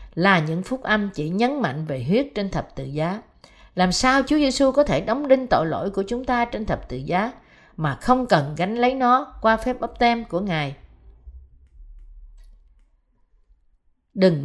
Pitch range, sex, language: 160-240 Hz, female, Vietnamese